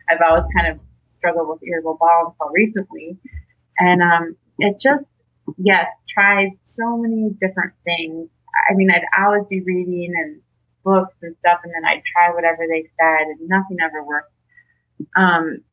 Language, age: English, 30-49